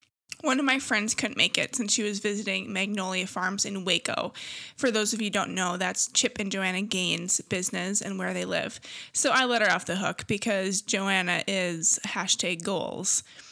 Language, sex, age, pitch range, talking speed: English, female, 20-39, 195-245 Hz, 195 wpm